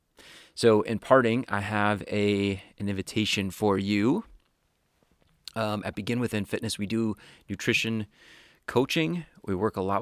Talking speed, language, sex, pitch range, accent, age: 140 wpm, English, male, 95-105 Hz, American, 30-49